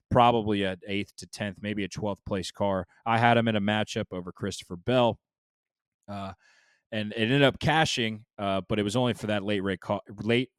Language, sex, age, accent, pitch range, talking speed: English, male, 20-39, American, 95-120 Hz, 185 wpm